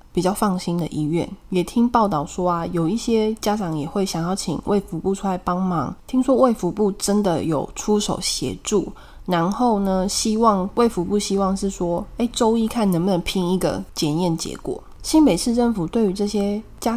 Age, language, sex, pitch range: 20-39, Chinese, female, 165-210 Hz